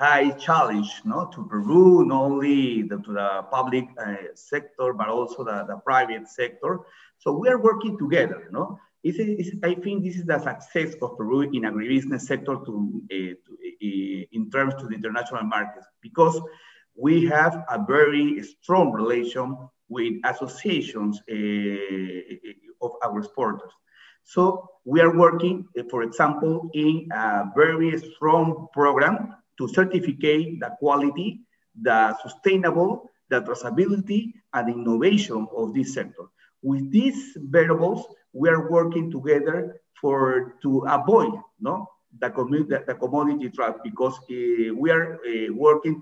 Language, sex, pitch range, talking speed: English, male, 120-180 Hz, 145 wpm